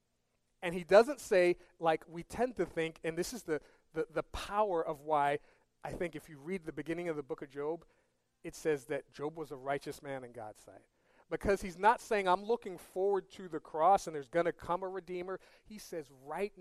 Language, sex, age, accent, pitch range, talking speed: English, male, 40-59, American, 150-195 Hz, 220 wpm